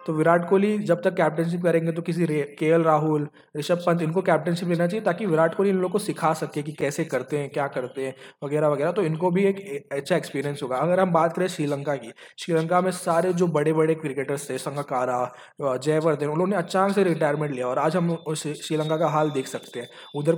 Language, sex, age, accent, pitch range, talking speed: Hindi, male, 20-39, native, 145-170 Hz, 210 wpm